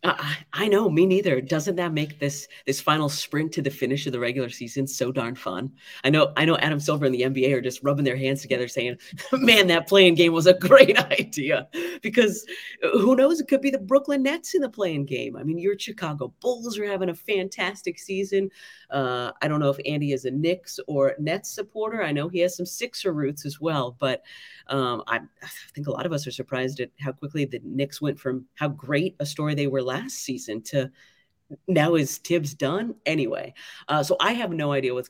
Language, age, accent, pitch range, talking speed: English, 40-59, American, 130-175 Hz, 220 wpm